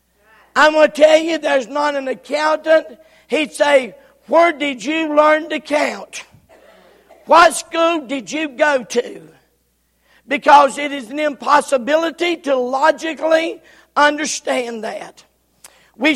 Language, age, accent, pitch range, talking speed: English, 50-69, American, 270-310 Hz, 125 wpm